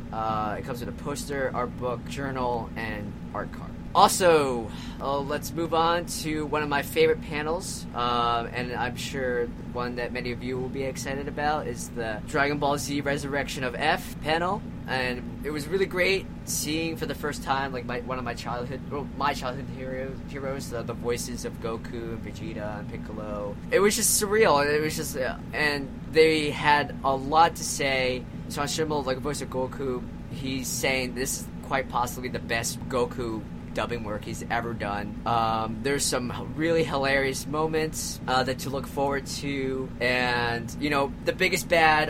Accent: American